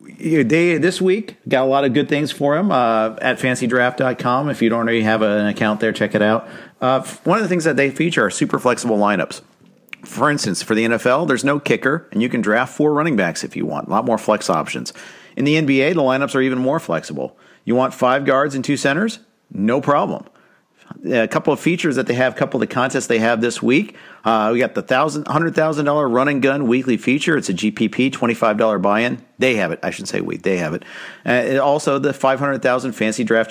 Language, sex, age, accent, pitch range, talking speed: English, male, 50-69, American, 110-145 Hz, 220 wpm